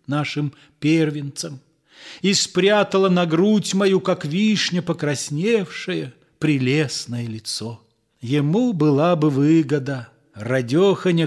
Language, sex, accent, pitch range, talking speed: Russian, male, native, 130-175 Hz, 90 wpm